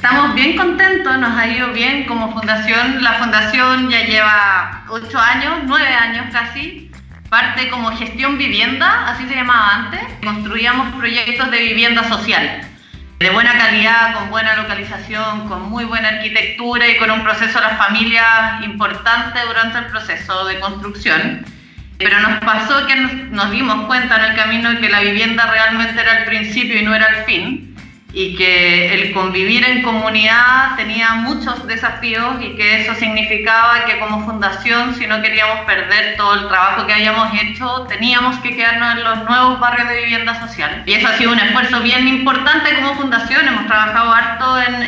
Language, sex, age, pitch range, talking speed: Spanish, female, 30-49, 215-245 Hz, 170 wpm